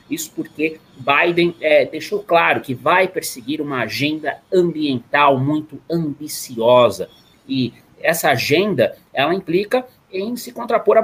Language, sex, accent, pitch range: Portuguese, male, Brazilian, 120-175 Hz